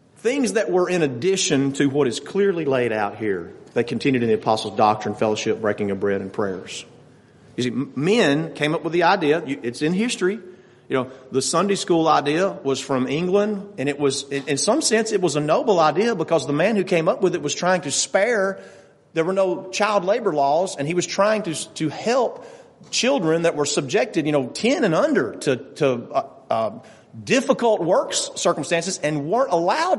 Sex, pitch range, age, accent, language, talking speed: male, 135-195 Hz, 40-59, American, English, 200 wpm